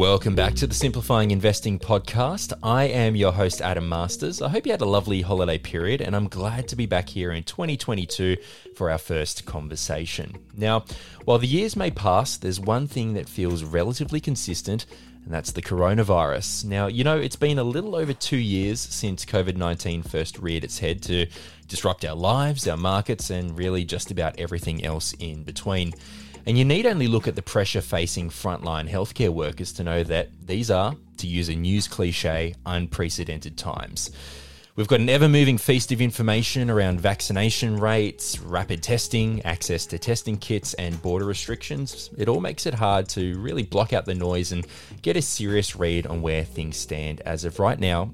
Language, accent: English, Australian